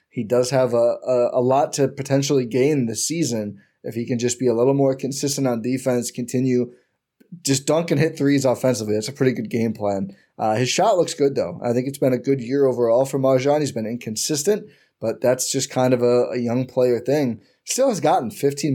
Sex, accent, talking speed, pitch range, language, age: male, American, 220 wpm, 120-140 Hz, English, 20-39